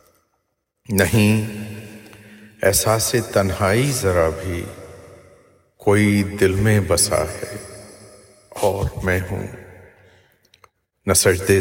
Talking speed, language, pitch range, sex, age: 70 wpm, Urdu, 90-105 Hz, male, 50-69